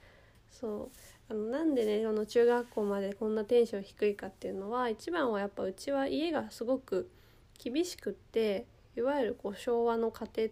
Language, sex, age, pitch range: Japanese, female, 20-39, 195-255 Hz